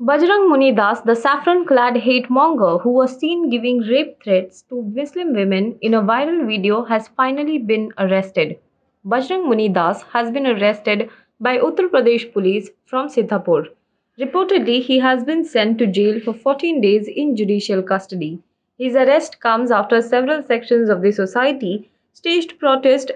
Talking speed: 155 wpm